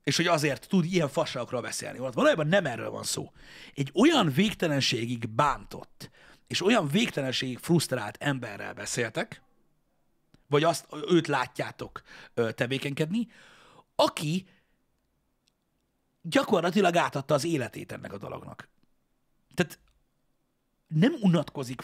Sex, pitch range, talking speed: male, 125-170 Hz, 105 wpm